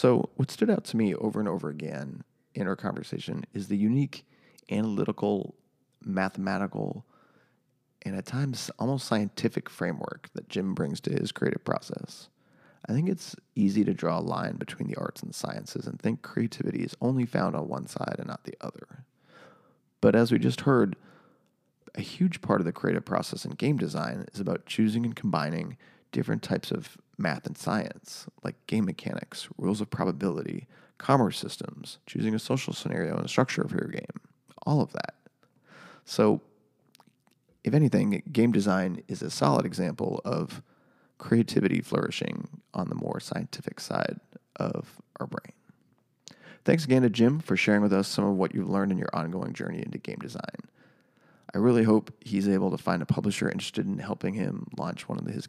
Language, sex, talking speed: English, male, 175 wpm